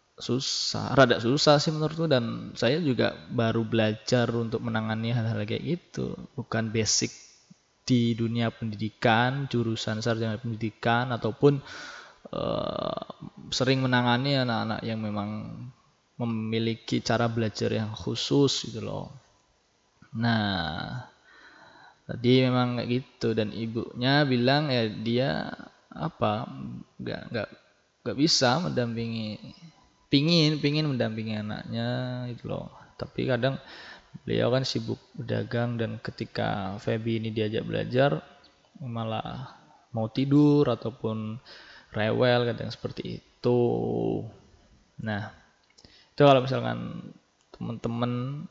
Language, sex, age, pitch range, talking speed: Indonesian, male, 20-39, 110-130 Hz, 100 wpm